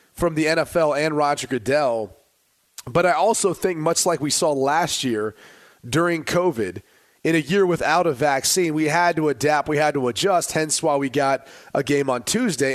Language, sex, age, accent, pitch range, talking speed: English, male, 30-49, American, 145-190 Hz, 190 wpm